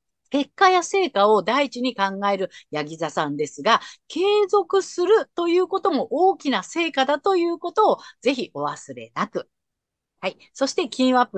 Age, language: 50-69, Japanese